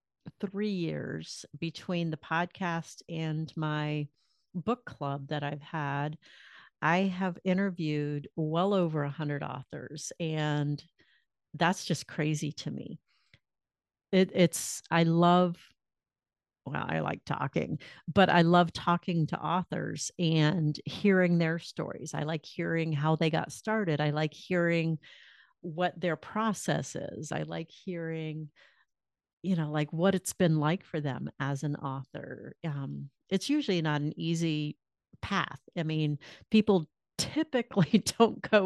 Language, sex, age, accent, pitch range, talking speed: English, female, 50-69, American, 150-175 Hz, 135 wpm